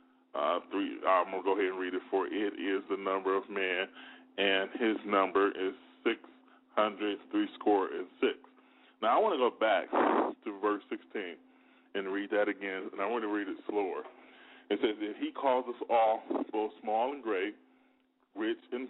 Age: 20-39